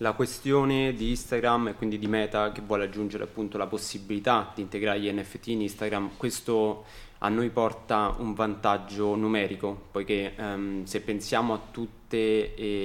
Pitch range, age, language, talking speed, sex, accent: 105-125 Hz, 20-39, Italian, 150 wpm, male, native